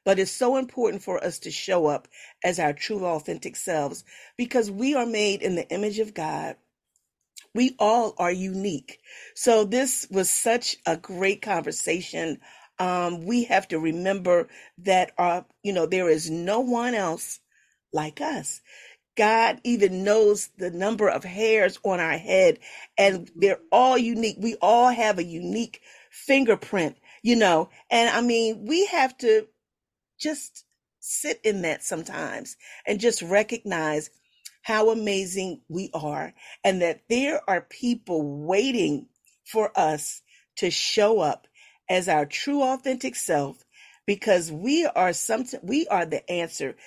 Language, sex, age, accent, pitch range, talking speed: English, female, 40-59, American, 175-235 Hz, 145 wpm